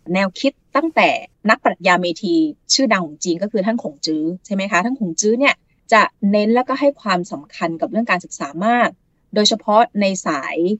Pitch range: 175-235 Hz